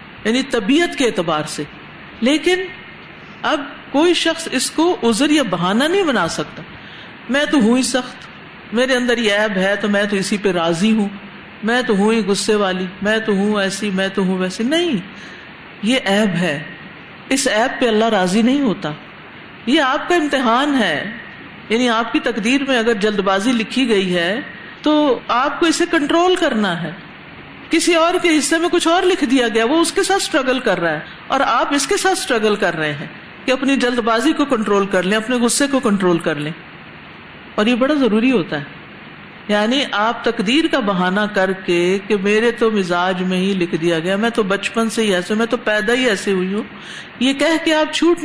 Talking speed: 205 wpm